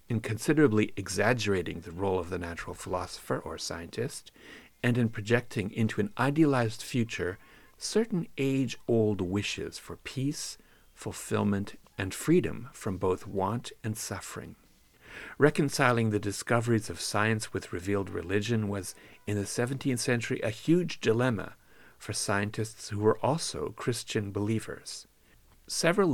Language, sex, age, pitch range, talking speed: English, male, 50-69, 100-125 Hz, 125 wpm